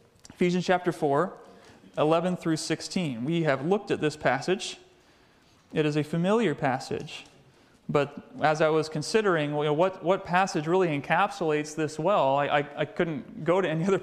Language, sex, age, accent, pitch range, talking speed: English, male, 30-49, American, 155-210 Hz, 160 wpm